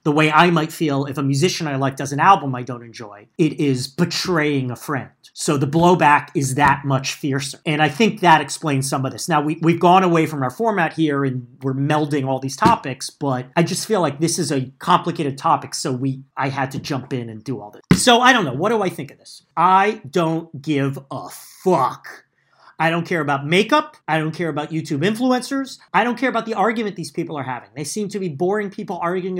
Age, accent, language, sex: 40-59, American, English, male